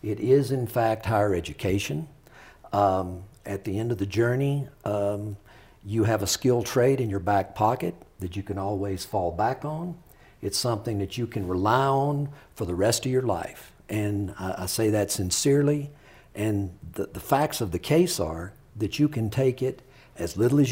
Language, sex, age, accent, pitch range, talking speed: English, male, 50-69, American, 100-135 Hz, 190 wpm